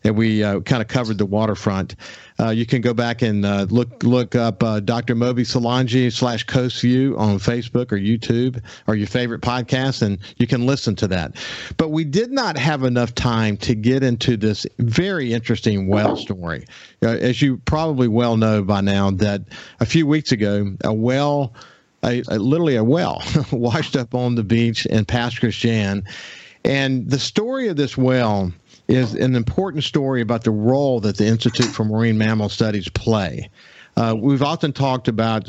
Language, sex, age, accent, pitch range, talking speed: English, male, 50-69, American, 110-130 Hz, 180 wpm